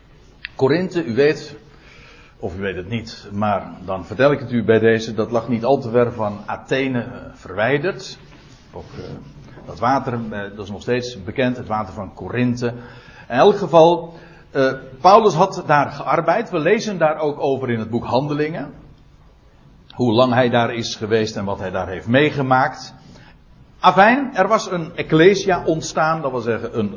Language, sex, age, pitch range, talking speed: Dutch, male, 60-79, 115-155 Hz, 175 wpm